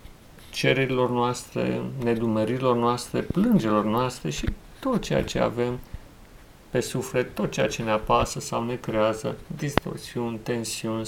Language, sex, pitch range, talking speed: Romanian, male, 115-165 Hz, 125 wpm